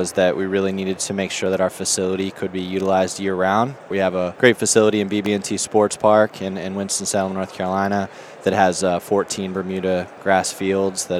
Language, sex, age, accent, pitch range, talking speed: English, male, 20-39, American, 95-100 Hz, 200 wpm